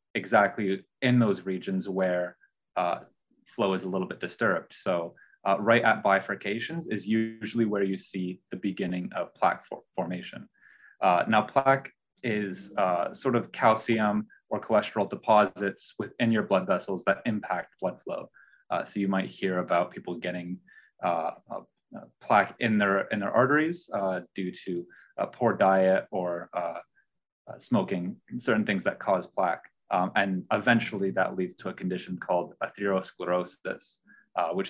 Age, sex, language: 20-39, male, English